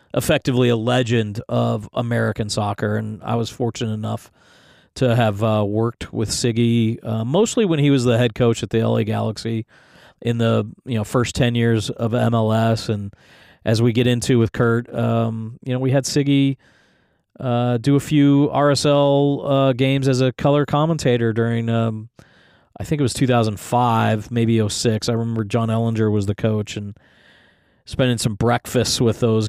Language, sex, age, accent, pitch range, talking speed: English, male, 40-59, American, 110-125 Hz, 170 wpm